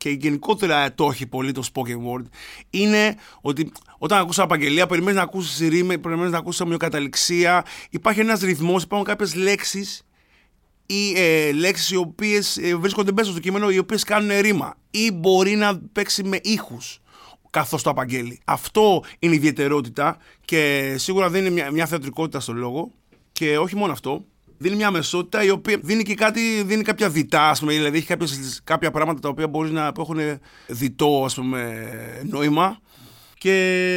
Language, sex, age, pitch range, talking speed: Greek, male, 30-49, 140-190 Hz, 160 wpm